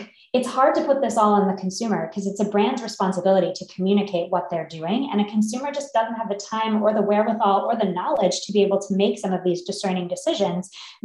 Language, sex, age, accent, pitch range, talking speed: English, female, 20-39, American, 185-215 Hz, 240 wpm